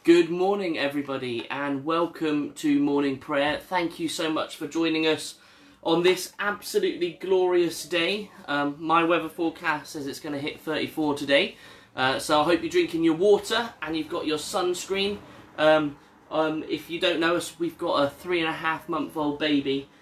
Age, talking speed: 20-39, 185 wpm